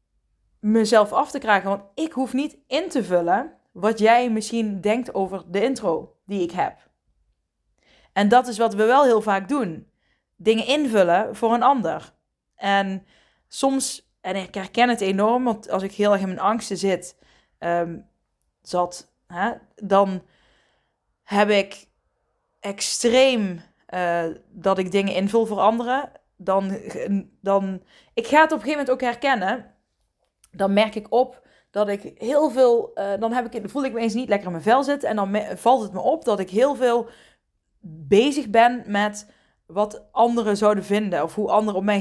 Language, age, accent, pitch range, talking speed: Dutch, 20-39, Dutch, 190-235 Hz, 170 wpm